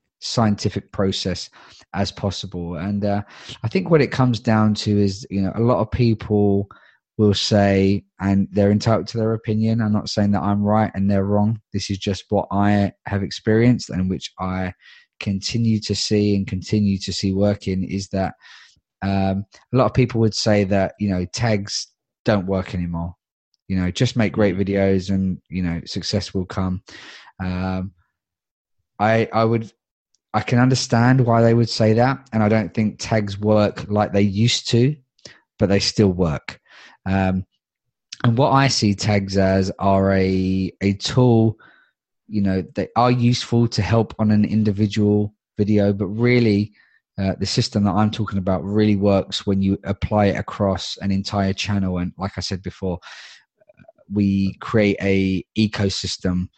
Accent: British